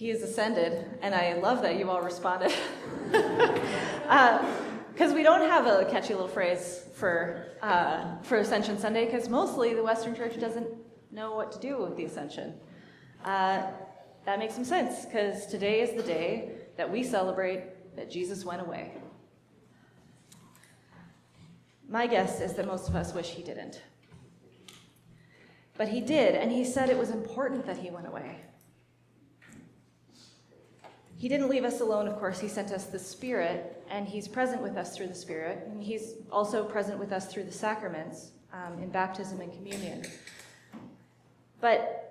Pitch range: 190-235 Hz